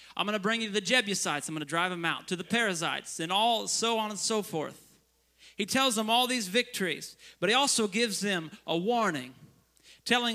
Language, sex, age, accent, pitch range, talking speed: English, male, 30-49, American, 165-225 Hz, 210 wpm